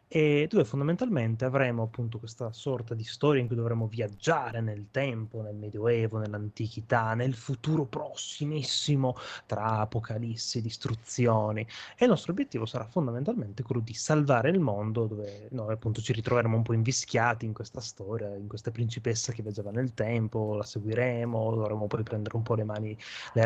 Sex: male